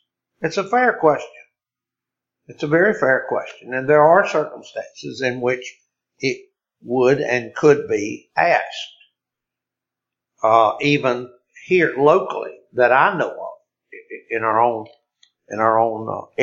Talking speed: 130 wpm